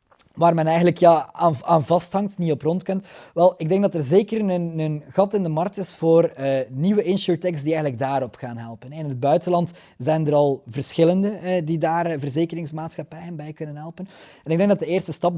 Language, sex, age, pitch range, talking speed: Dutch, male, 20-39, 145-180 Hz, 205 wpm